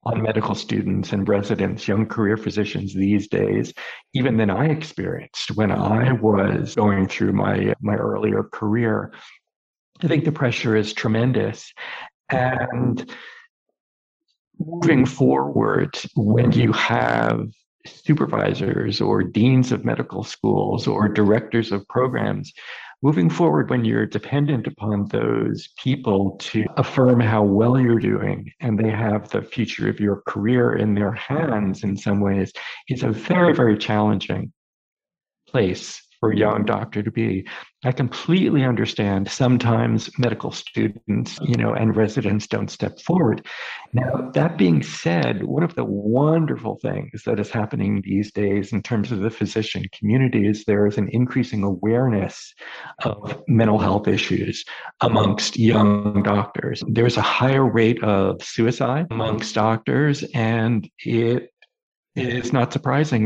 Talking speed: 140 wpm